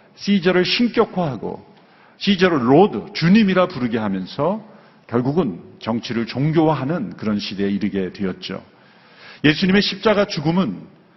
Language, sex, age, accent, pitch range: Korean, male, 40-59, native, 130-195 Hz